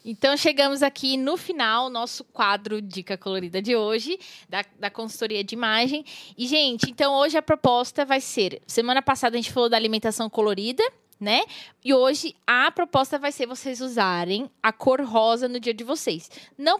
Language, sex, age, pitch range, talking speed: Portuguese, female, 10-29, 215-265 Hz, 175 wpm